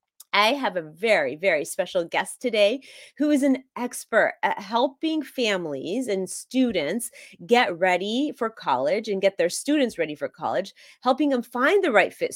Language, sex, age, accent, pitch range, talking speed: English, female, 30-49, American, 190-275 Hz, 165 wpm